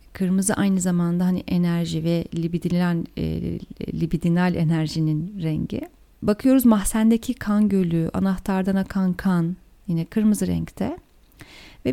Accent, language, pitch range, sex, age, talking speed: native, Turkish, 175-230 Hz, female, 40-59, 110 wpm